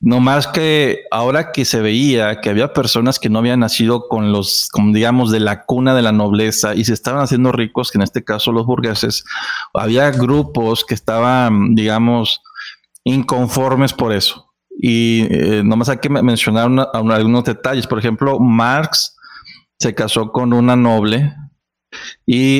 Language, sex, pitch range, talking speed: Spanish, male, 110-130 Hz, 160 wpm